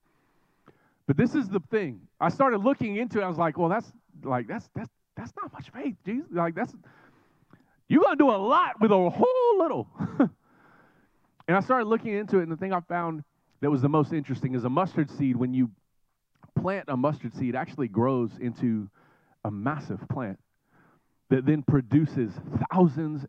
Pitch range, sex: 145-205 Hz, male